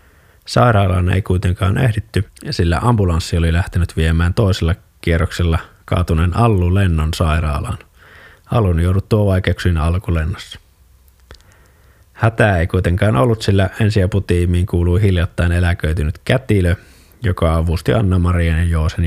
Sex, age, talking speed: male, 20-39, 105 wpm